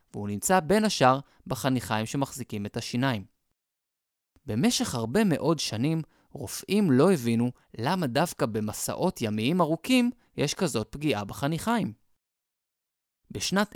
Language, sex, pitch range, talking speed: Hebrew, male, 115-185 Hz, 110 wpm